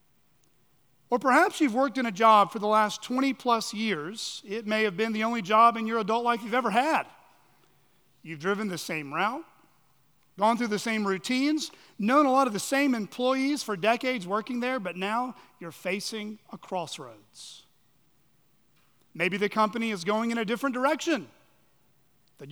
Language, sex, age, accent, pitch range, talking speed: English, male, 40-59, American, 180-245 Hz, 170 wpm